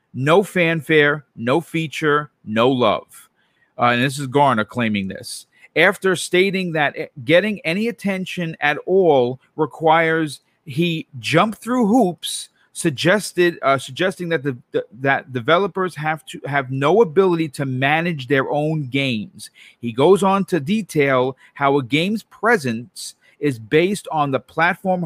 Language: English